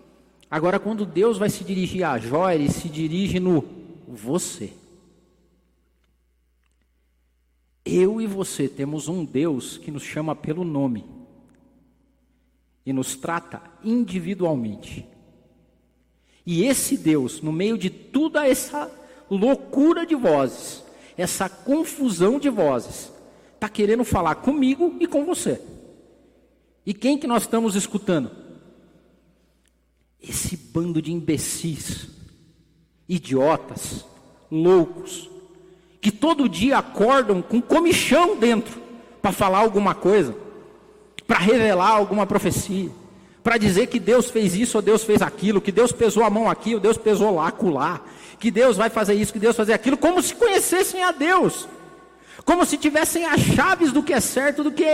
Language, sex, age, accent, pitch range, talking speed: Portuguese, male, 50-69, Brazilian, 175-270 Hz, 140 wpm